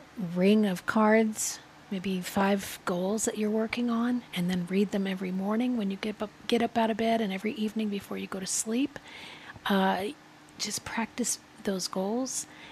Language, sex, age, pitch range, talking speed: English, female, 40-59, 180-220 Hz, 180 wpm